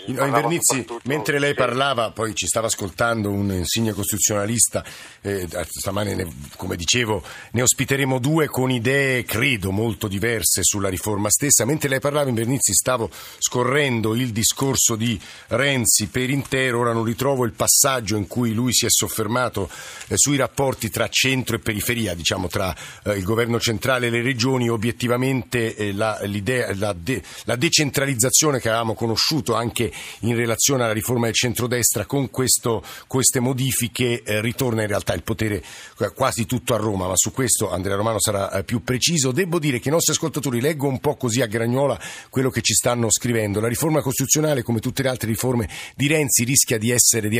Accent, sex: native, male